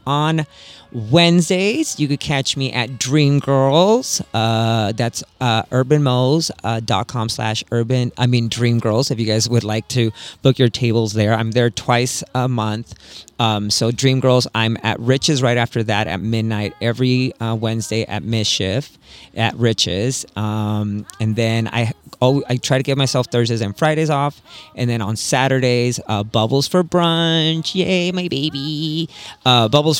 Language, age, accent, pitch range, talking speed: English, 30-49, American, 105-130 Hz, 160 wpm